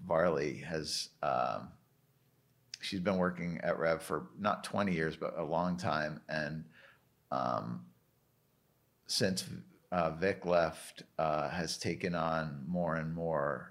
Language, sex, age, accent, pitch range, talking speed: English, male, 50-69, American, 80-95 Hz, 125 wpm